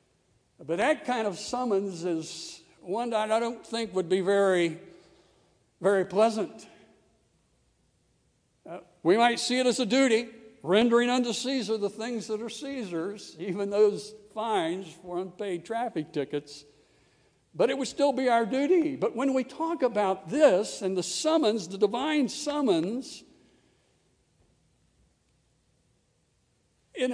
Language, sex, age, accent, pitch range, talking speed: English, male, 60-79, American, 180-230 Hz, 130 wpm